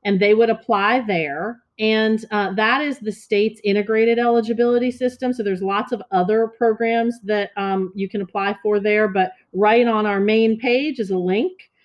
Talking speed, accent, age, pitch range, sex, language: 180 wpm, American, 40-59, 200-235 Hz, female, English